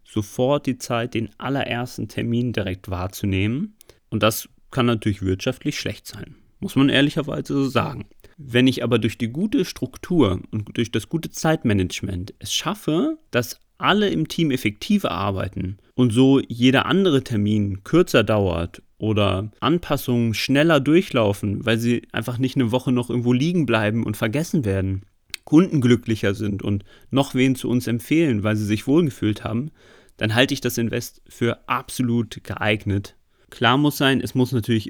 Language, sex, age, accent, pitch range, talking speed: German, male, 30-49, German, 105-135 Hz, 160 wpm